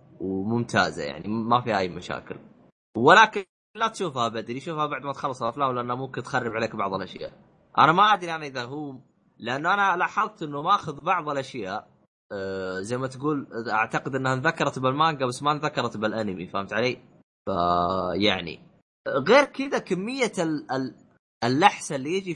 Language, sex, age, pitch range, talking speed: Arabic, male, 20-39, 100-140 Hz, 155 wpm